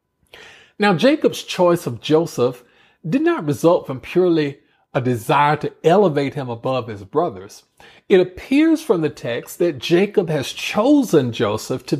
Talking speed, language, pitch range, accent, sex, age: 145 wpm, English, 130-180 Hz, American, male, 50-69